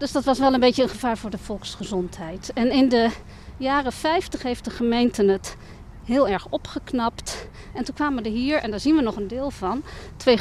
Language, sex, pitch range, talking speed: Dutch, female, 205-275 Hz, 215 wpm